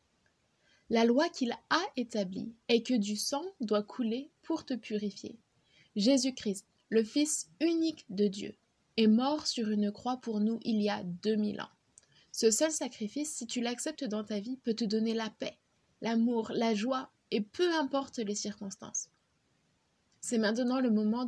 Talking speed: 165 wpm